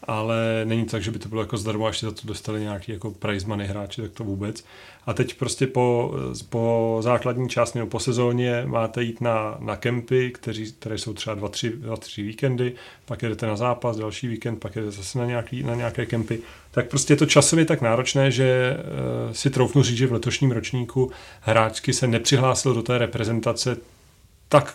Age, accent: 30-49, native